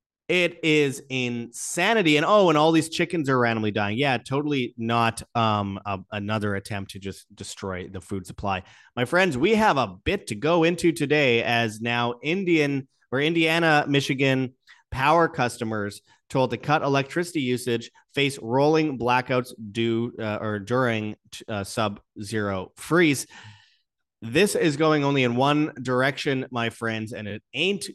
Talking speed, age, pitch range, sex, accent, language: 150 wpm, 30-49, 110-145 Hz, male, American, English